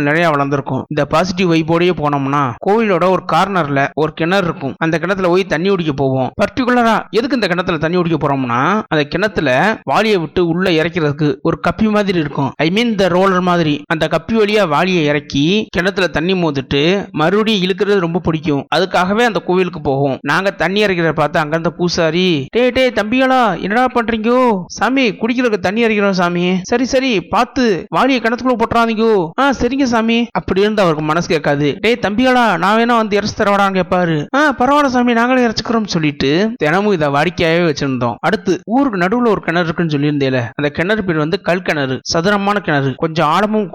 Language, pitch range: Tamil, 155-205 Hz